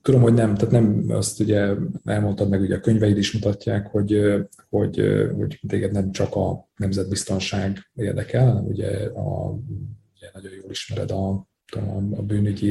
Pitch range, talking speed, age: 100-115 Hz, 160 wpm, 30-49